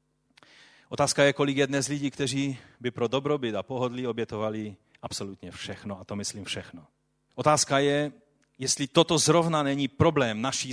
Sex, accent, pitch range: male, native, 120-170 Hz